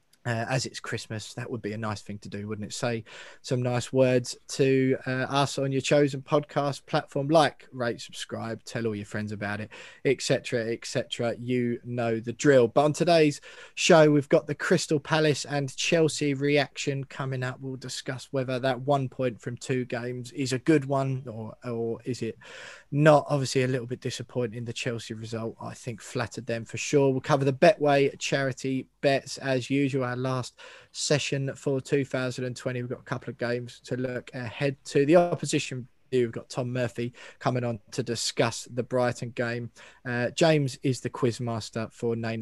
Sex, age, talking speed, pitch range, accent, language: male, 20-39, 185 wpm, 115-140 Hz, British, English